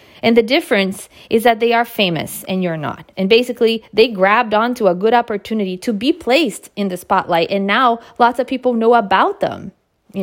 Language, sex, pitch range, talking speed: English, female, 175-230 Hz, 200 wpm